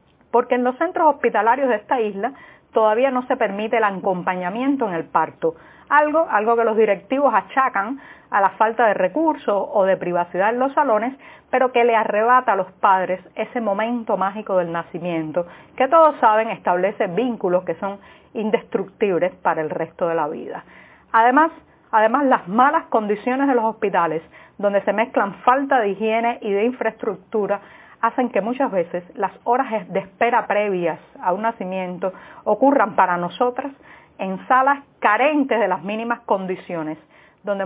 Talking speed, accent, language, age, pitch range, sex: 160 wpm, American, Spanish, 40-59, 190-250 Hz, female